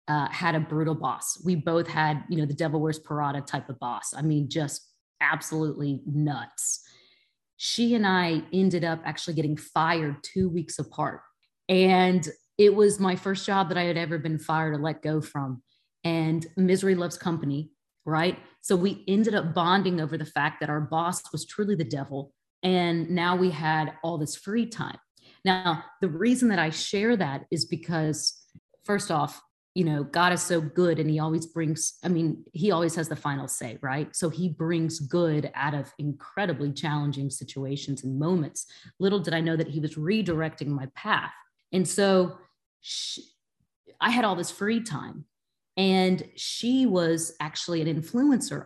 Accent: American